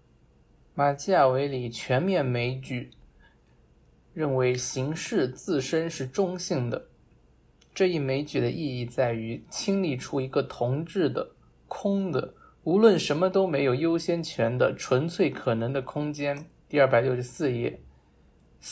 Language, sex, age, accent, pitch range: Chinese, male, 20-39, native, 115-155 Hz